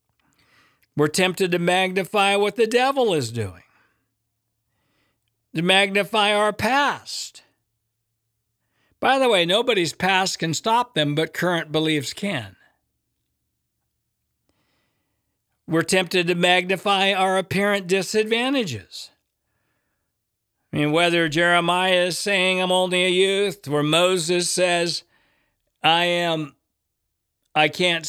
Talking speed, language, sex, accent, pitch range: 105 wpm, English, male, American, 155-195 Hz